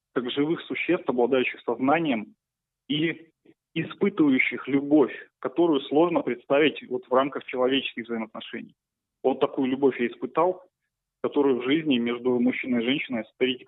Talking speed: 125 wpm